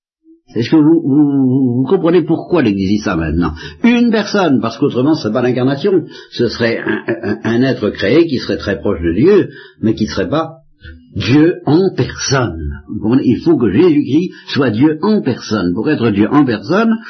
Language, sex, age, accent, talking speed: French, male, 60-79, French, 195 wpm